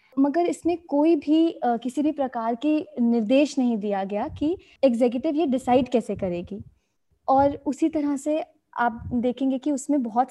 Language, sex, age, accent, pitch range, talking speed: Hindi, female, 20-39, native, 225-280 Hz, 165 wpm